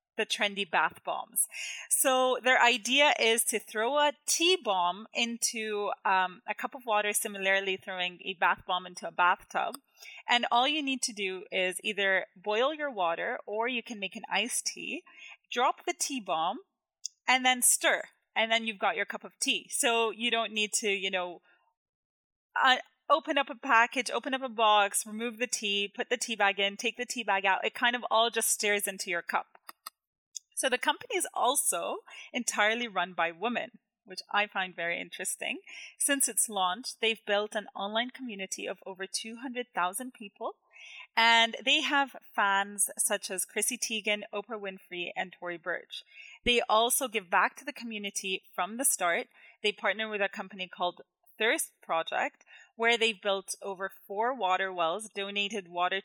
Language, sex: English, female